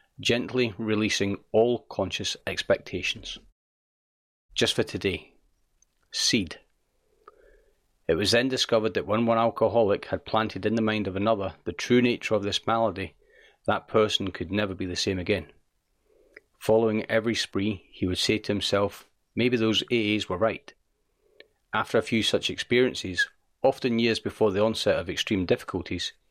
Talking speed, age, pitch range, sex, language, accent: 145 wpm, 40-59, 100-115 Hz, male, English, British